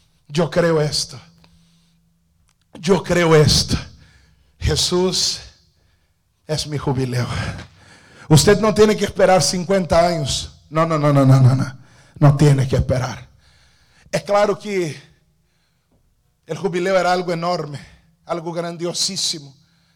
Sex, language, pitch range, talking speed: male, Spanish, 135-180 Hz, 110 wpm